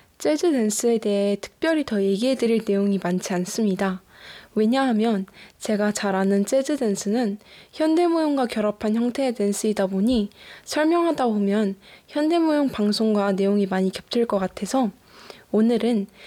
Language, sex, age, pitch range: Korean, female, 10-29, 200-255 Hz